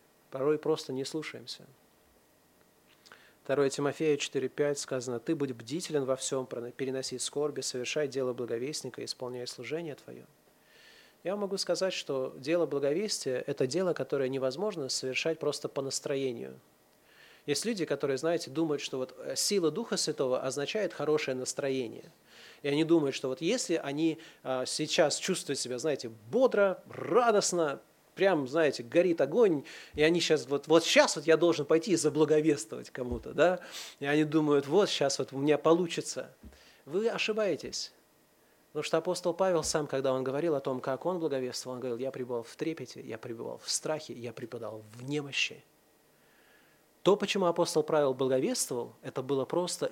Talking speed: 150 wpm